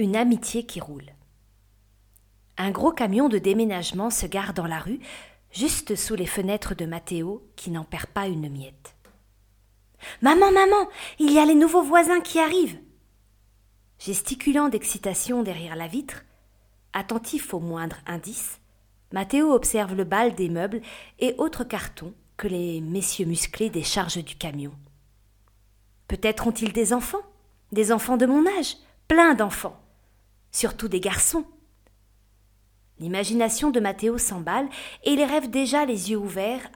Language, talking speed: French, 140 wpm